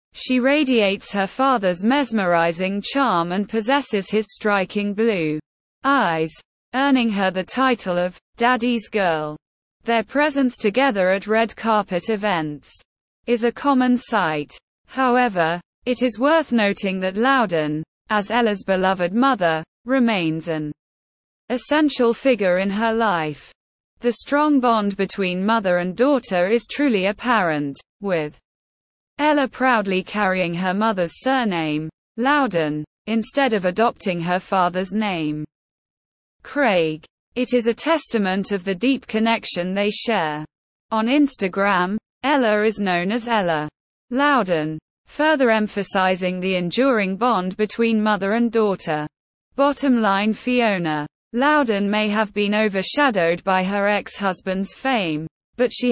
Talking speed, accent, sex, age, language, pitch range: 120 wpm, British, female, 20-39, English, 180-245 Hz